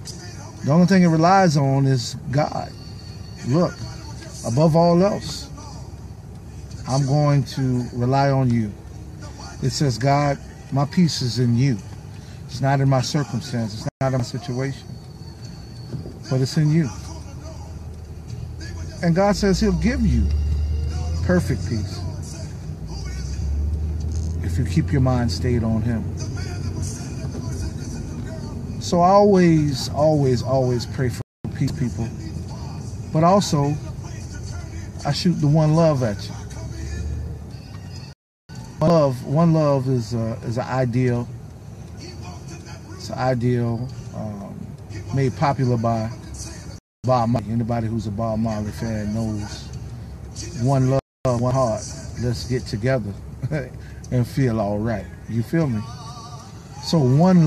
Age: 50-69